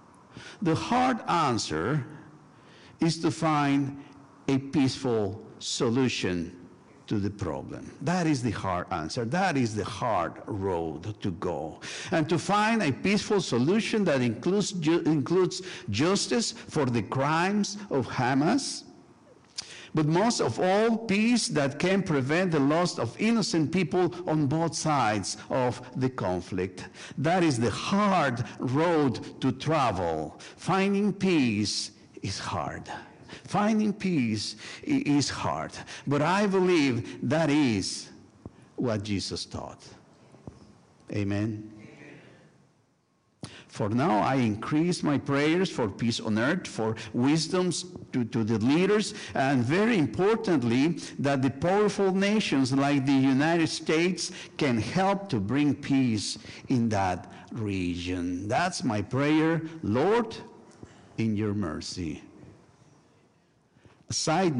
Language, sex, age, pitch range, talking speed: English, male, 60-79, 115-175 Hz, 115 wpm